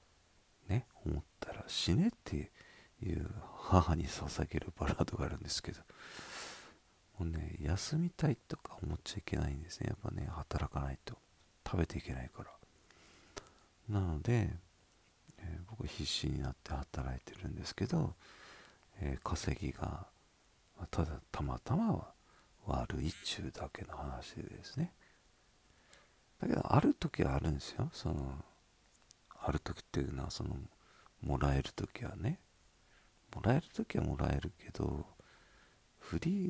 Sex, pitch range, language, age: male, 75-95 Hz, Japanese, 50-69